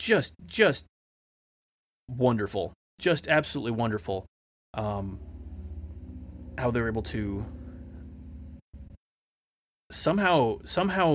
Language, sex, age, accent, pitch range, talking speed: English, male, 30-49, American, 90-130 Hz, 70 wpm